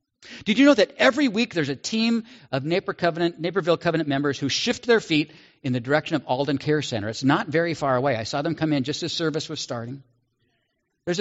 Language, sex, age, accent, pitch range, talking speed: English, male, 50-69, American, 125-175 Hz, 215 wpm